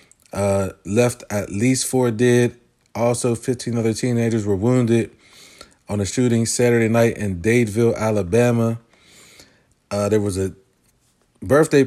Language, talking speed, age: English, 125 wpm, 30-49